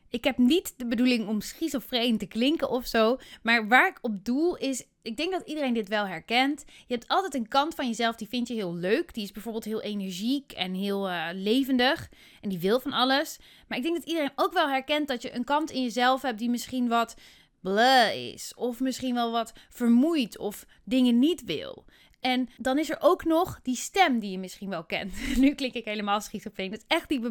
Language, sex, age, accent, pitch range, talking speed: Dutch, female, 20-39, Dutch, 220-275 Hz, 225 wpm